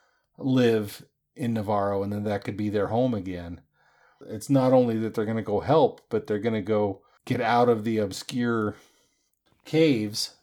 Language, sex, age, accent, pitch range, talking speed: English, male, 40-59, American, 105-125 Hz, 180 wpm